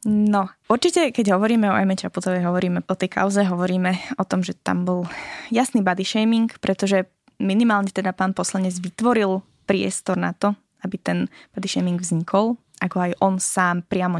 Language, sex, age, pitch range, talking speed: Slovak, female, 20-39, 180-225 Hz, 165 wpm